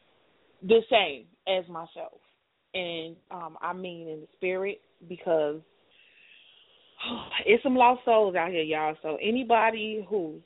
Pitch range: 160-185 Hz